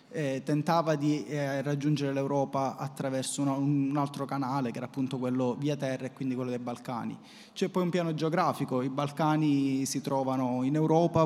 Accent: native